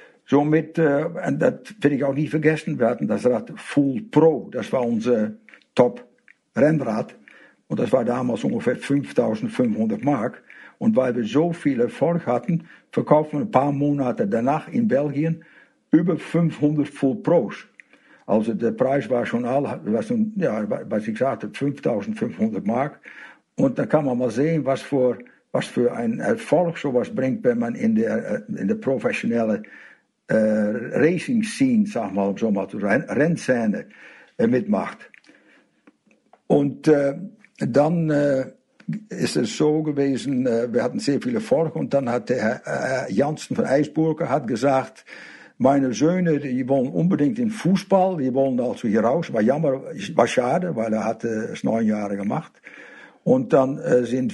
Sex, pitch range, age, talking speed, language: male, 135-225 Hz, 60-79, 155 wpm, German